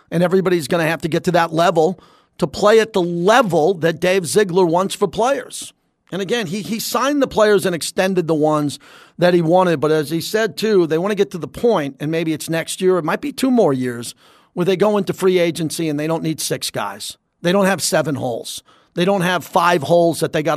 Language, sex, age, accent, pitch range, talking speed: English, male, 40-59, American, 160-190 Hz, 240 wpm